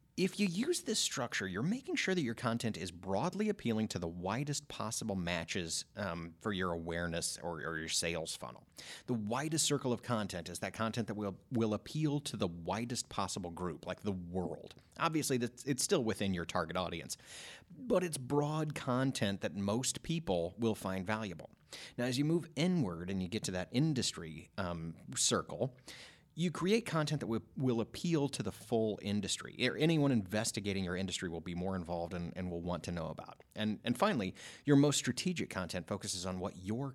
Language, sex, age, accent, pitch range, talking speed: English, male, 30-49, American, 95-130 Hz, 185 wpm